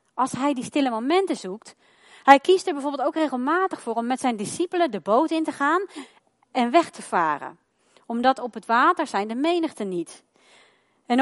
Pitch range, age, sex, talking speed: 220-290 Hz, 30-49, female, 185 wpm